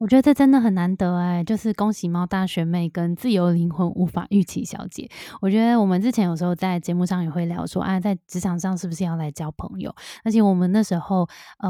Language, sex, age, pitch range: Chinese, female, 20-39, 175-225 Hz